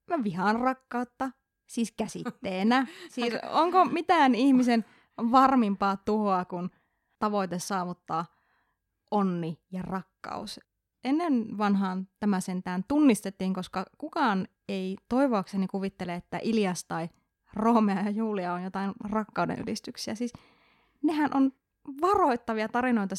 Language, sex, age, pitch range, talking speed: Finnish, female, 20-39, 190-240 Hz, 110 wpm